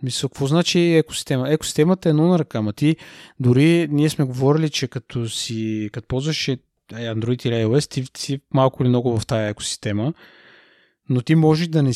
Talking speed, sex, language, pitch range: 175 wpm, male, Bulgarian, 115-140 Hz